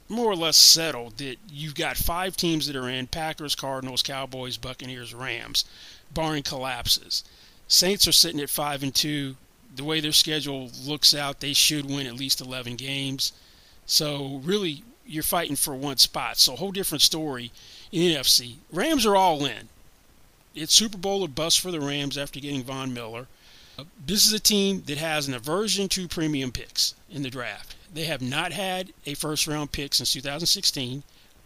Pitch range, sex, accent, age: 135-170 Hz, male, American, 40-59